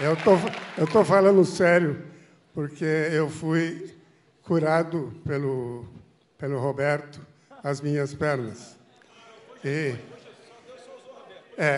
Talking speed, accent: 90 wpm, Brazilian